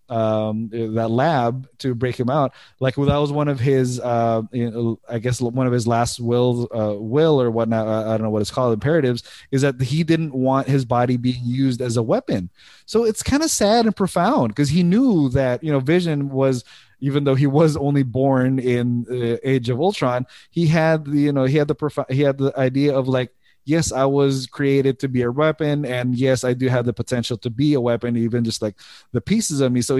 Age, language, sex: 20-39, English, male